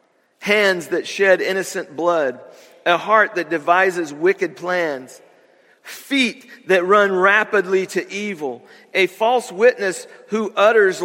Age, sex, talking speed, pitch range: 50-69, male, 120 wpm, 150-210 Hz